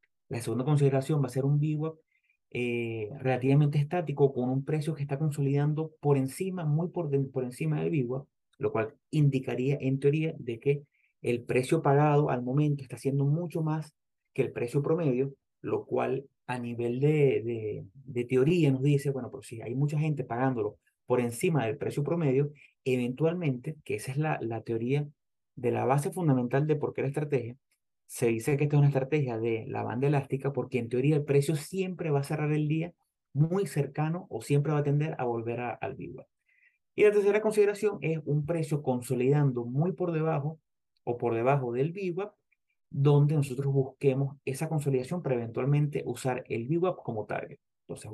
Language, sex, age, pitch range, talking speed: Spanish, male, 30-49, 130-155 Hz, 185 wpm